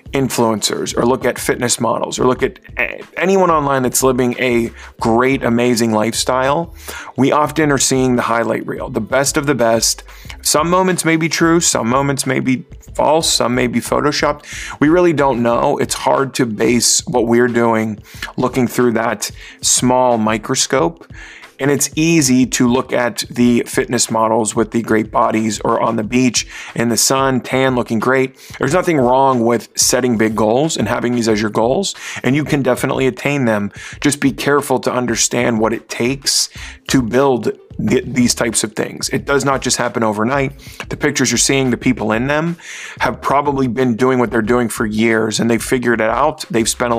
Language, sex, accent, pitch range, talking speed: English, male, American, 115-135 Hz, 190 wpm